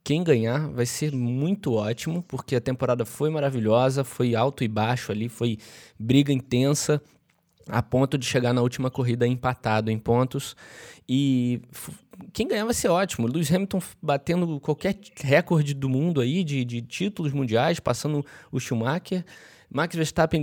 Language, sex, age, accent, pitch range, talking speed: Portuguese, male, 20-39, Brazilian, 120-155 Hz, 155 wpm